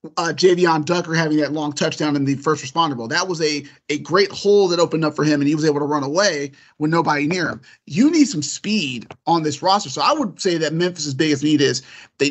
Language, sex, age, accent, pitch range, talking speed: English, male, 30-49, American, 150-190 Hz, 250 wpm